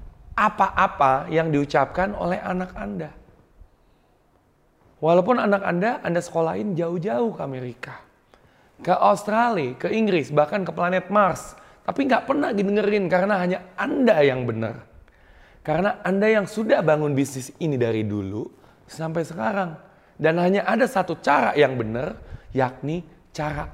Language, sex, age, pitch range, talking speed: Indonesian, male, 30-49, 130-210 Hz, 130 wpm